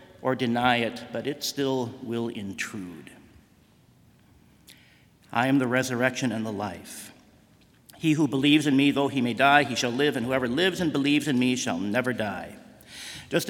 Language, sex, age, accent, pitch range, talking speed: English, male, 50-69, American, 125-160 Hz, 170 wpm